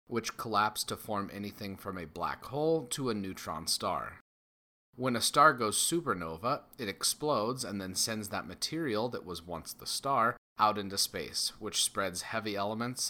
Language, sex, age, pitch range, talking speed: English, male, 30-49, 95-120 Hz, 170 wpm